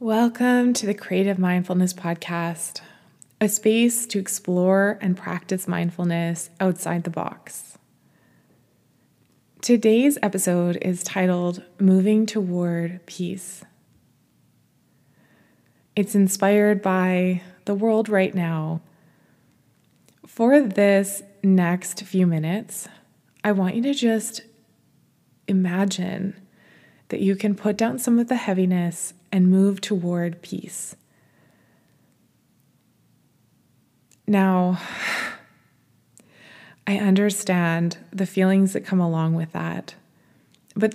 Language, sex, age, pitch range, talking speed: English, female, 20-39, 180-210 Hz, 95 wpm